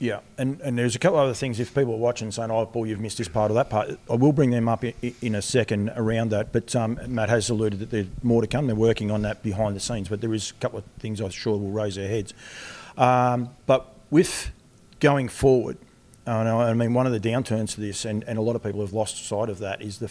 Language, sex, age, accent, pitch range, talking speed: English, male, 40-59, Australian, 105-125 Hz, 270 wpm